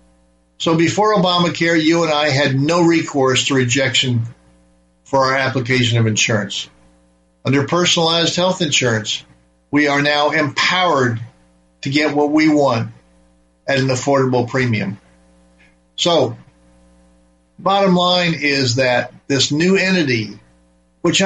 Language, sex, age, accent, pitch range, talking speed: English, male, 50-69, American, 120-155 Hz, 120 wpm